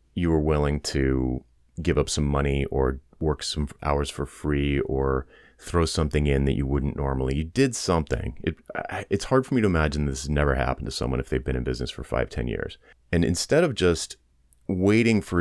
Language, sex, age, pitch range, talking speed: English, male, 30-49, 70-90 Hz, 205 wpm